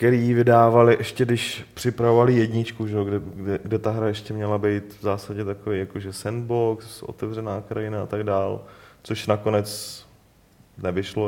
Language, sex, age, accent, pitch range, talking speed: Czech, male, 30-49, native, 100-125 Hz, 150 wpm